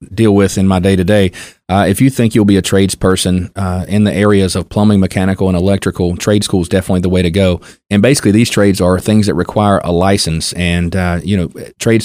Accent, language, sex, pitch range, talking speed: American, English, male, 90-105 Hz, 230 wpm